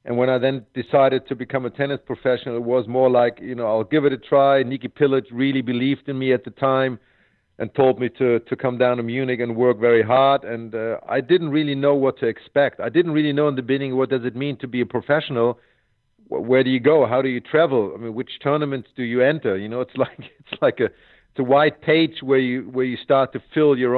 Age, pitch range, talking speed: 50-69, 125-145 Hz, 255 wpm